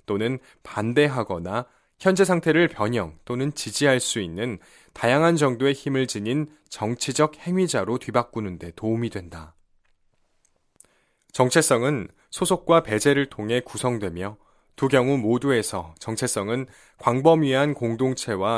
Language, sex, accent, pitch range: Korean, male, native, 105-145 Hz